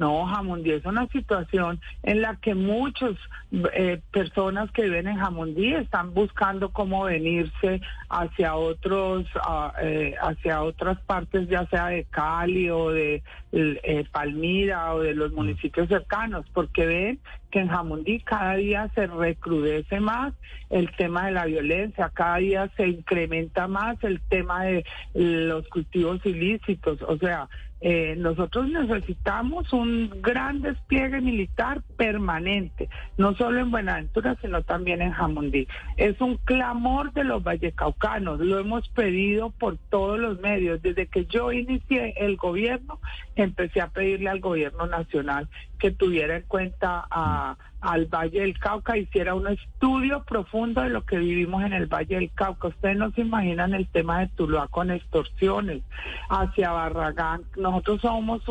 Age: 50-69